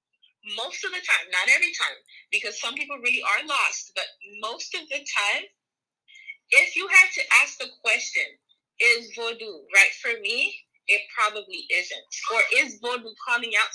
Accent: American